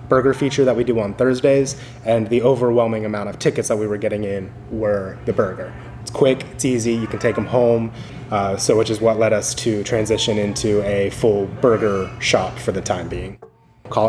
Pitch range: 105-125 Hz